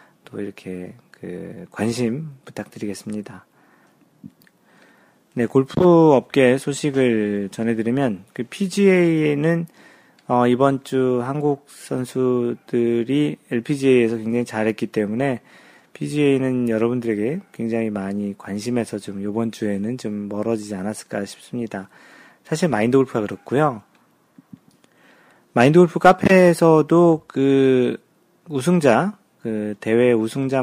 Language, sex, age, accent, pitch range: Korean, male, 40-59, native, 110-140 Hz